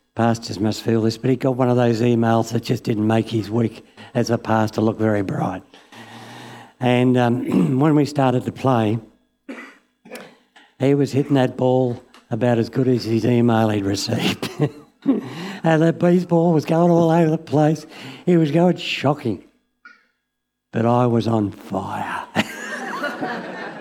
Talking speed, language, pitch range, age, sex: 155 wpm, English, 125-175 Hz, 60-79, male